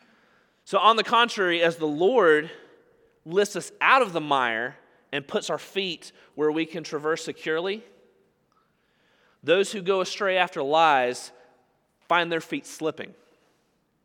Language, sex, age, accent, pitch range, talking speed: English, male, 30-49, American, 140-220 Hz, 135 wpm